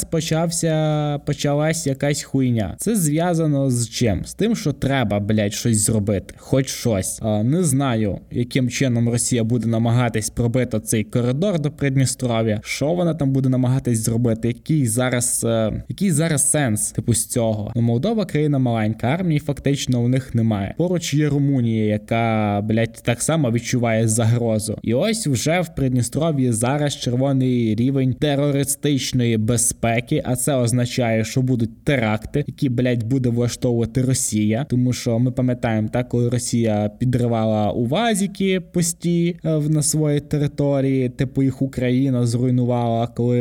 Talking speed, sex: 140 wpm, male